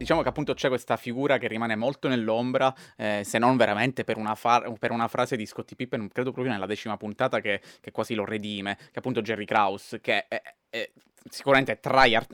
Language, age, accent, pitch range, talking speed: Italian, 20-39, native, 110-125 Hz, 215 wpm